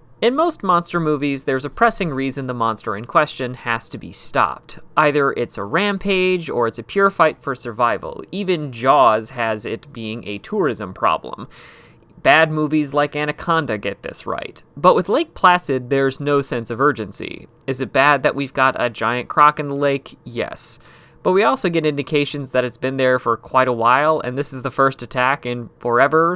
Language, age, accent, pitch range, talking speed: English, 30-49, American, 125-160 Hz, 195 wpm